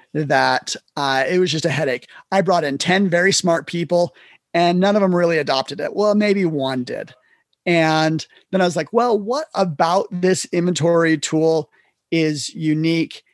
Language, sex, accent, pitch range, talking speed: English, male, American, 150-180 Hz, 170 wpm